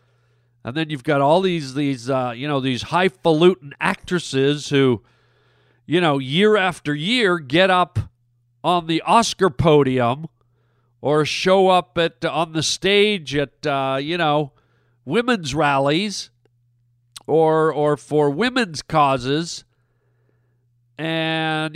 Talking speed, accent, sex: 125 wpm, American, male